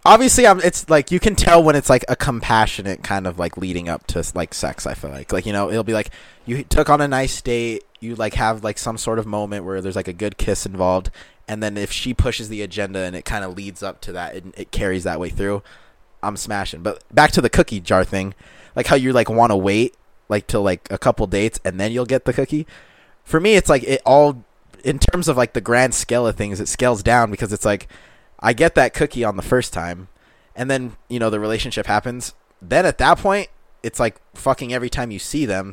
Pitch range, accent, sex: 100-125 Hz, American, male